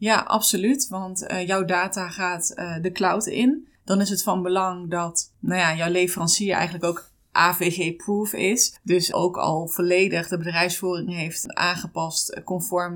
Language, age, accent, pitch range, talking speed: Dutch, 20-39, Dutch, 170-190 Hz, 150 wpm